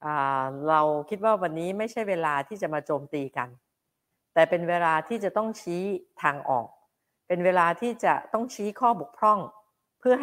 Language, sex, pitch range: Thai, female, 145-210 Hz